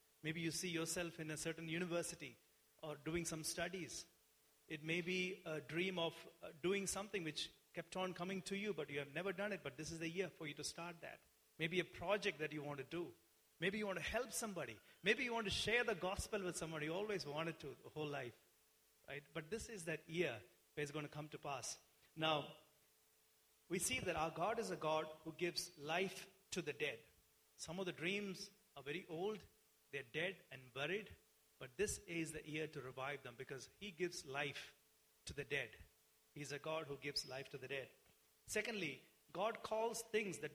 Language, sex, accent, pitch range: English, male, Indian, 150-185 Hz